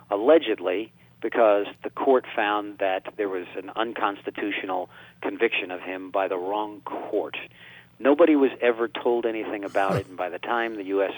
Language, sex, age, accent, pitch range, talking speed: English, male, 40-59, American, 95-115 Hz, 160 wpm